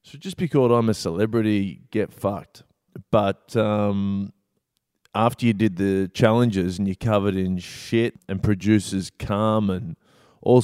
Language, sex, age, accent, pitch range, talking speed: English, male, 20-39, Australian, 95-120 Hz, 140 wpm